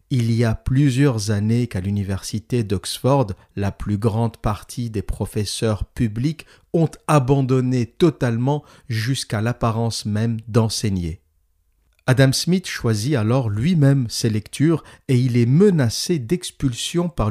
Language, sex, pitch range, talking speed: French, male, 105-135 Hz, 120 wpm